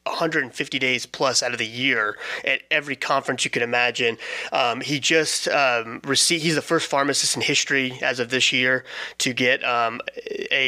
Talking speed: 180 wpm